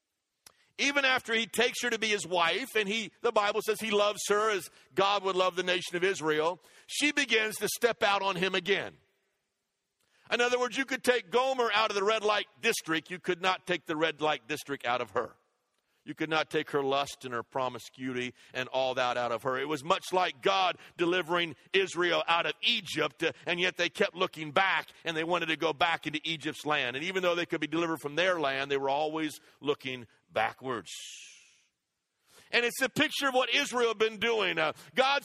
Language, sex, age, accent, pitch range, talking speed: English, male, 50-69, American, 165-230 Hz, 210 wpm